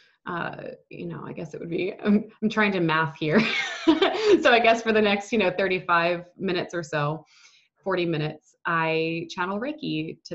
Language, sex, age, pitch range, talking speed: English, female, 20-39, 165-205 Hz, 185 wpm